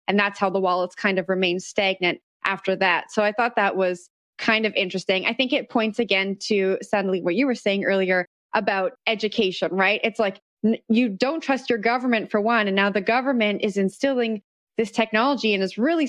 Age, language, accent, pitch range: 20-39, English, American, 195-250 Hz